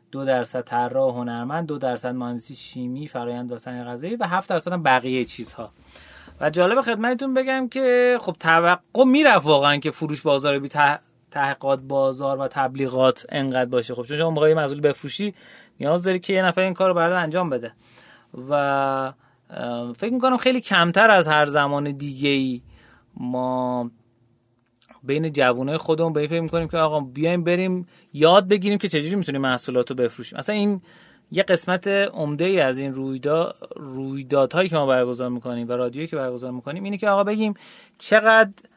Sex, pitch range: male, 130-185 Hz